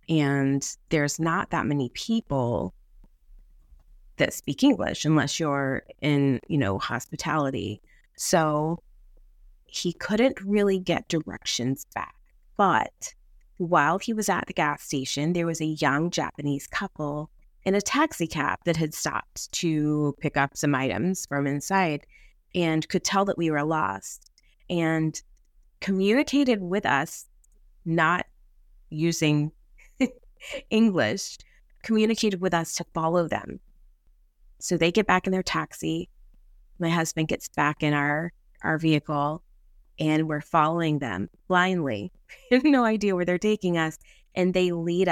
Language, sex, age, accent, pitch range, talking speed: English, female, 30-49, American, 145-180 Hz, 135 wpm